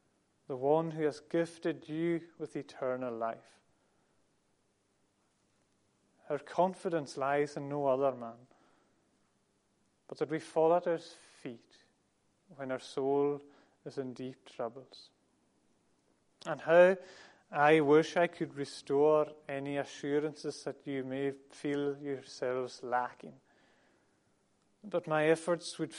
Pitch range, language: 130-165 Hz, English